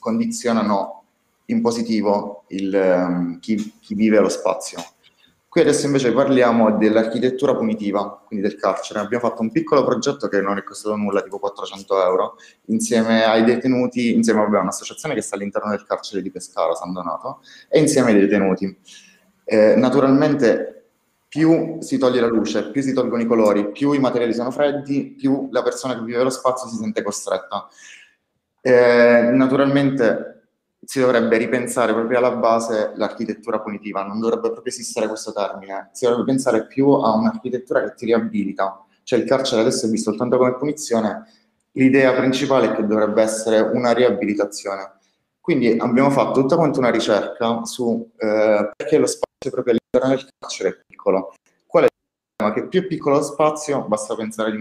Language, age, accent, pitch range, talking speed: Italian, 30-49, native, 110-135 Hz, 165 wpm